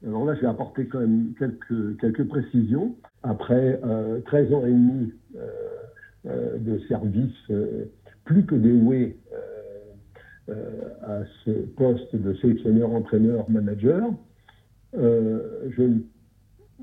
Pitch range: 110-140 Hz